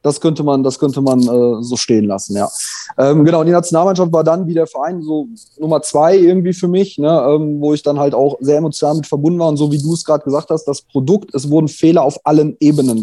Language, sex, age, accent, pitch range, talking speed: German, male, 20-39, German, 140-165 Hz, 250 wpm